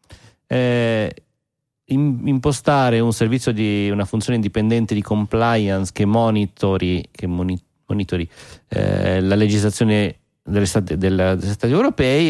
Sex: male